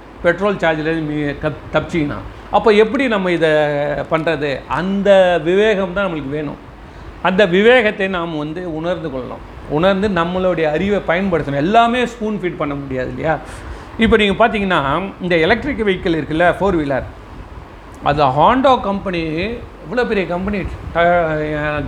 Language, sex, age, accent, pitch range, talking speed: Tamil, male, 40-59, native, 145-195 Hz, 120 wpm